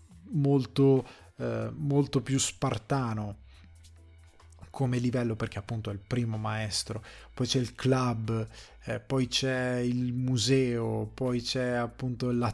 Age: 20-39